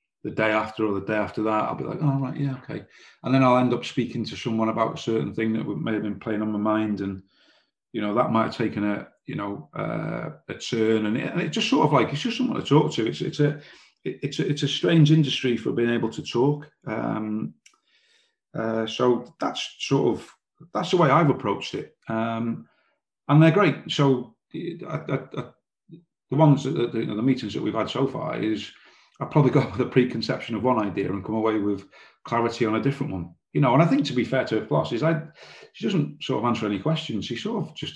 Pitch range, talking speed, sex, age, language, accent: 110-140 Hz, 220 wpm, male, 30-49, English, British